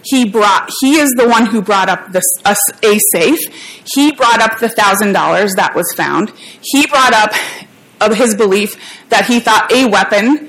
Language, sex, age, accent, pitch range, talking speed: English, female, 30-49, American, 215-260 Hz, 190 wpm